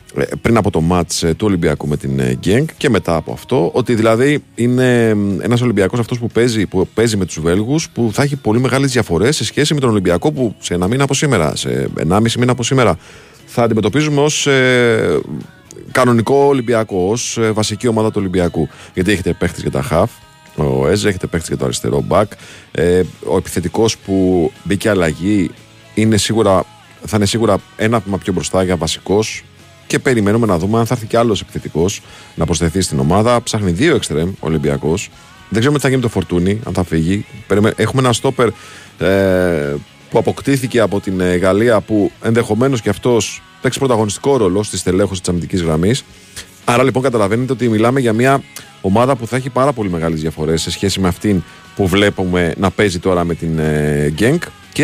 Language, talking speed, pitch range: Greek, 185 wpm, 90-120 Hz